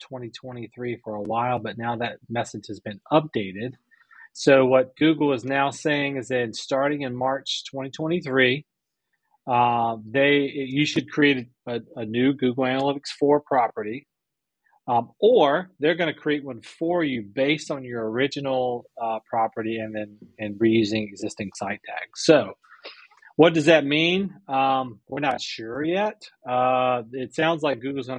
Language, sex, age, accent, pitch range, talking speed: English, male, 30-49, American, 115-145 Hz, 160 wpm